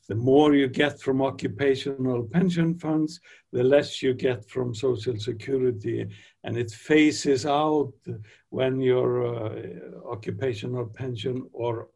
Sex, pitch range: male, 115-145 Hz